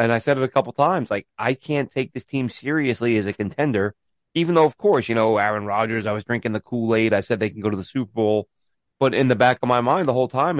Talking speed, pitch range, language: 275 wpm, 115-145 Hz, English